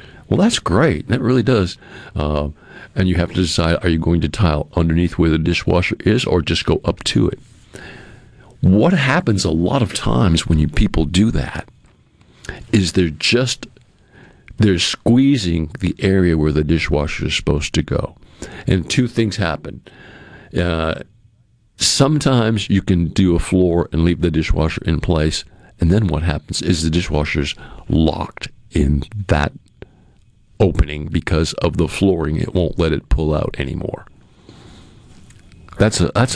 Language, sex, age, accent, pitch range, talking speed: English, male, 50-69, American, 80-100 Hz, 155 wpm